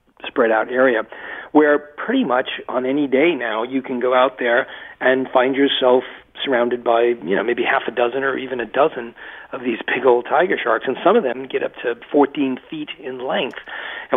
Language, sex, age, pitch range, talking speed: English, male, 40-59, 125-145 Hz, 205 wpm